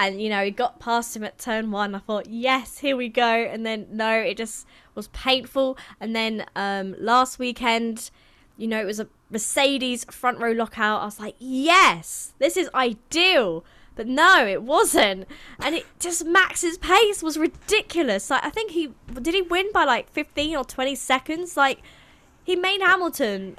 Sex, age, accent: female, 10-29, British